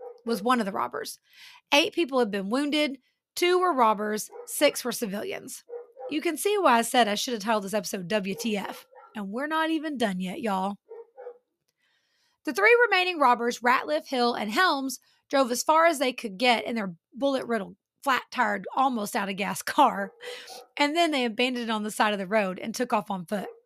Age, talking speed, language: 30-49, 185 wpm, English